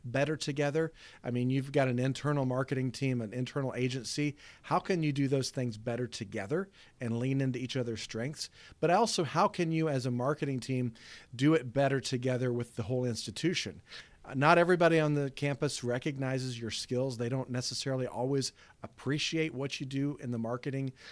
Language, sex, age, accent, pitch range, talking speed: English, male, 40-59, American, 120-140 Hz, 180 wpm